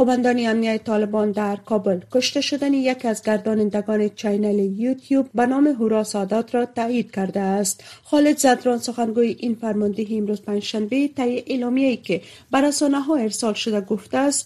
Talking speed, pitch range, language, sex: 145 wpm, 210-255 Hz, Persian, female